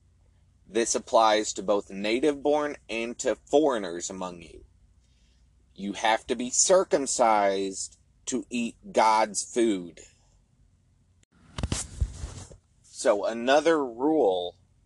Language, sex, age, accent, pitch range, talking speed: English, male, 30-49, American, 90-125 Hz, 90 wpm